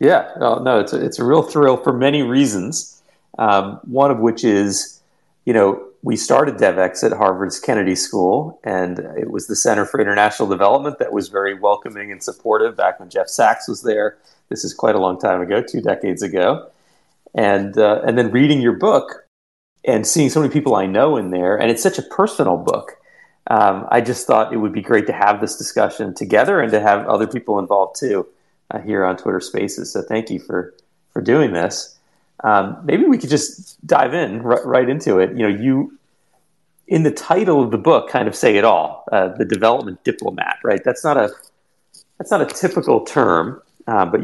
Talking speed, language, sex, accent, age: 200 wpm, English, male, American, 40-59